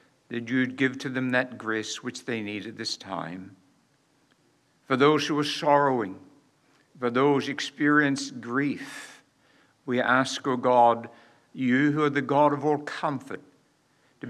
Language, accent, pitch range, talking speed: English, American, 120-145 Hz, 155 wpm